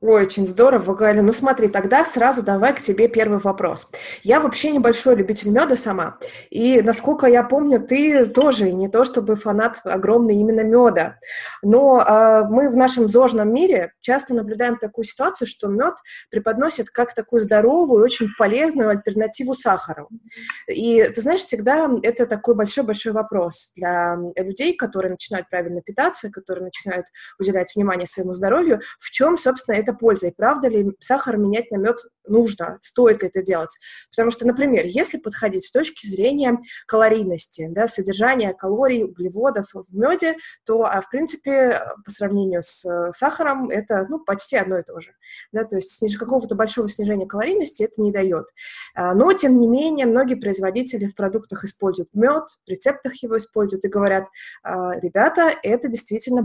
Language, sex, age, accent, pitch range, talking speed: Russian, female, 20-39, native, 200-255 Hz, 160 wpm